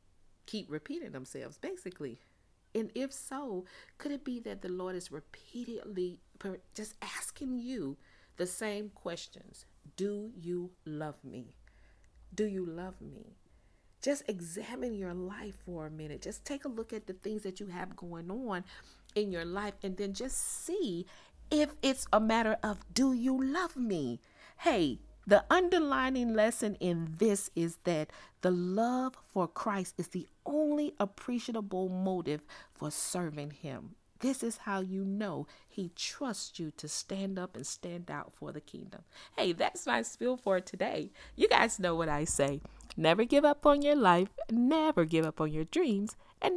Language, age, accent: English, 40-59, American